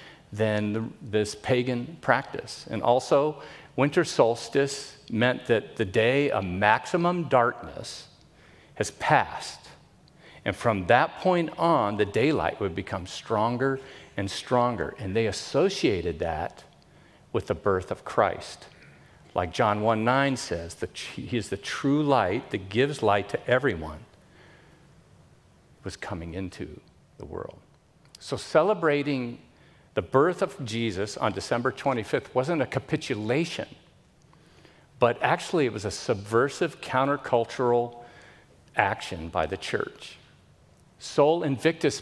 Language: English